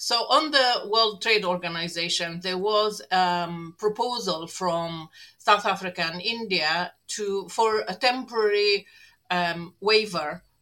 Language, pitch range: English, 170-210 Hz